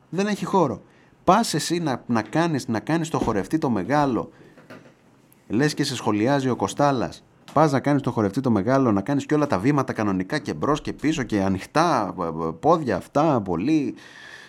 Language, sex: Greek, male